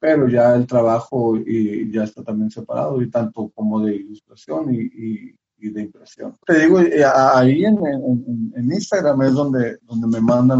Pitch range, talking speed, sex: 110-140 Hz, 175 wpm, male